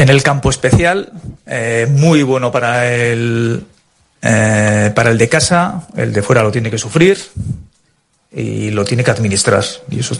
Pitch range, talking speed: 115-140 Hz, 165 wpm